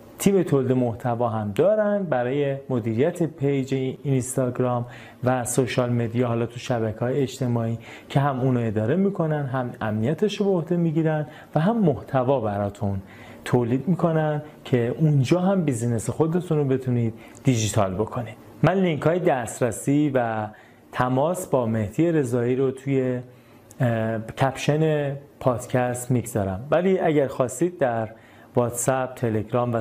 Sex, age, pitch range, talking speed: male, 30-49, 115-150 Hz, 130 wpm